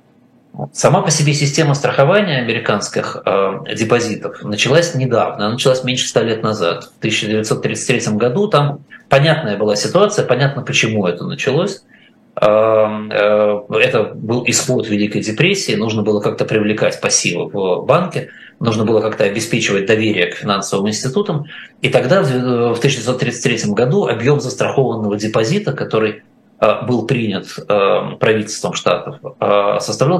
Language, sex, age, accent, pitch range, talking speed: Russian, male, 20-39, native, 105-140 Hz, 125 wpm